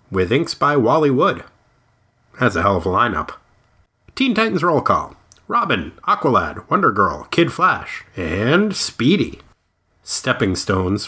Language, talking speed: English, 135 wpm